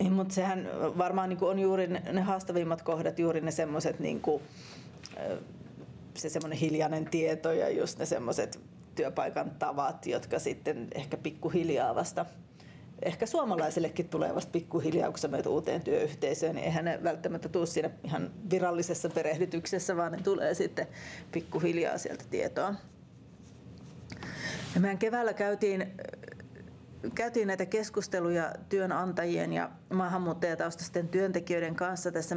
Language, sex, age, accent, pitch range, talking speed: Finnish, female, 30-49, native, 165-190 Hz, 115 wpm